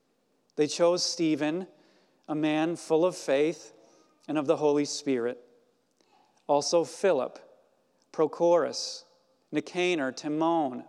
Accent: American